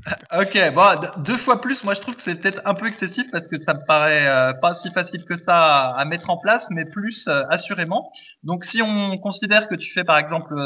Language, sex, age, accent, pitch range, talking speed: French, male, 20-39, French, 135-190 Hz, 235 wpm